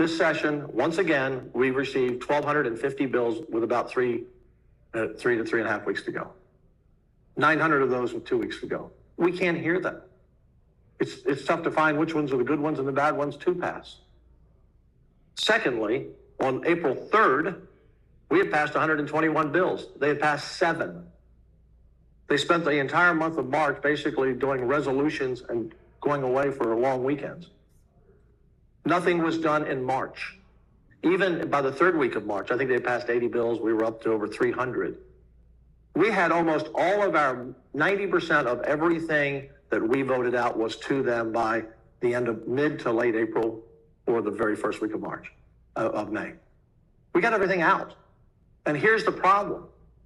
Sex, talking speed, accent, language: male, 175 wpm, American, English